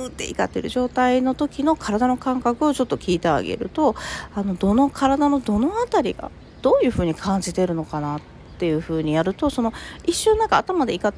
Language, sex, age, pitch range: Japanese, female, 40-59, 180-270 Hz